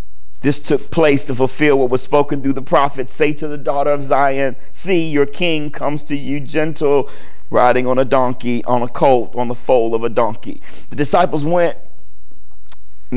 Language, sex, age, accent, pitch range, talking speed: English, male, 40-59, American, 115-150 Hz, 185 wpm